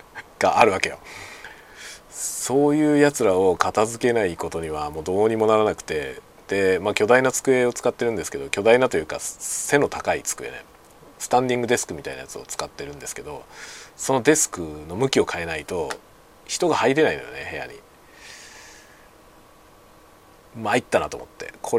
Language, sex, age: Japanese, male, 40-59